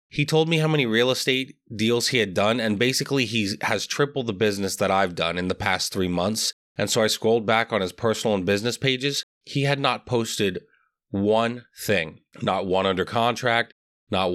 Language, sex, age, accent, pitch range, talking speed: English, male, 30-49, American, 110-150 Hz, 200 wpm